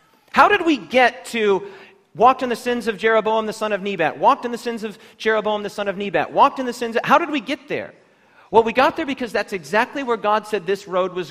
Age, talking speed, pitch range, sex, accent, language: 40-59, 255 wpm, 215-285 Hz, male, American, English